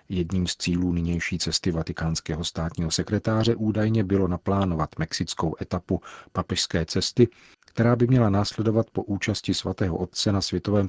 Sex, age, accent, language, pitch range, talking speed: male, 50-69, native, Czech, 85-100 Hz, 140 wpm